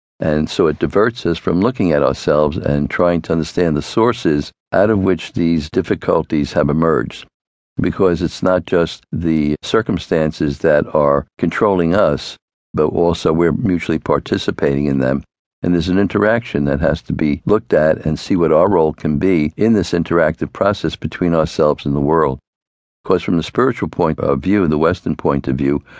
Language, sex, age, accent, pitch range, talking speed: English, male, 60-79, American, 75-90 Hz, 180 wpm